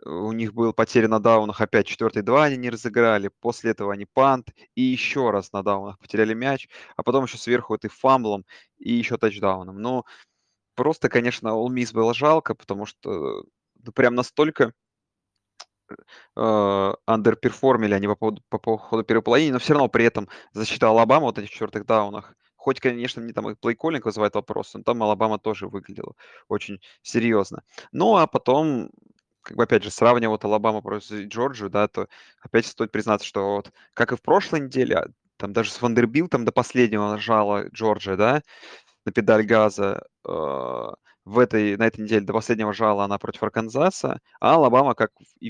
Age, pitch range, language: 20-39, 105-120 Hz, Russian